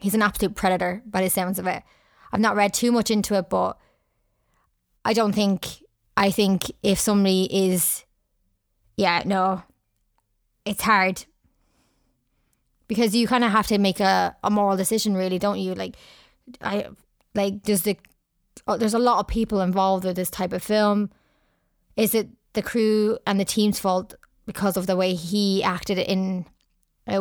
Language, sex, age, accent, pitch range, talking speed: English, female, 20-39, Irish, 185-210 Hz, 165 wpm